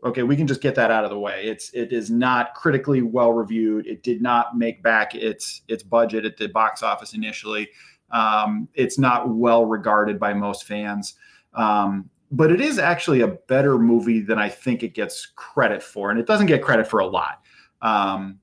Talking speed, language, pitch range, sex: 200 wpm, English, 110-140 Hz, male